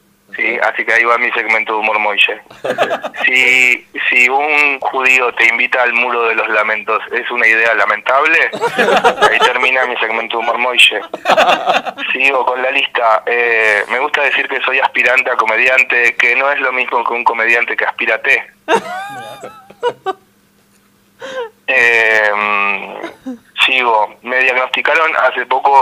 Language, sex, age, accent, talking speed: Spanish, male, 20-39, Argentinian, 135 wpm